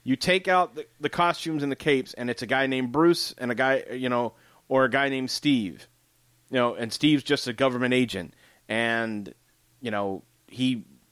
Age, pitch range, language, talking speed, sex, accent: 30-49, 115-155 Hz, English, 200 wpm, male, American